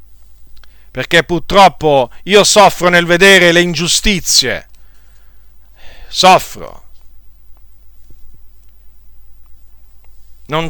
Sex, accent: male, native